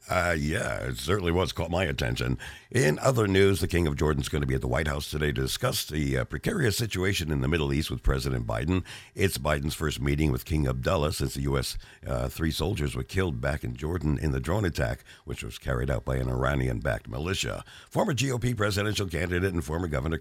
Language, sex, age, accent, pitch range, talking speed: English, male, 60-79, American, 70-95 Hz, 220 wpm